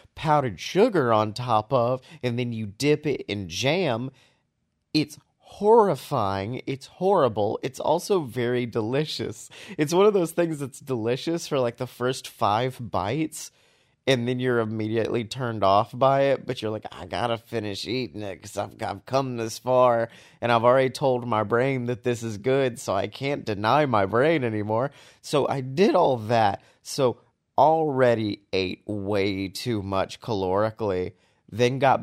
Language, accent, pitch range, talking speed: English, American, 105-135 Hz, 160 wpm